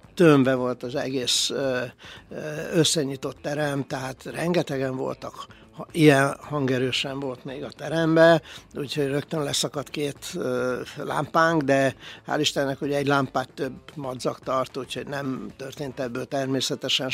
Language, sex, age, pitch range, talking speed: Hungarian, male, 60-79, 130-150 Hz, 120 wpm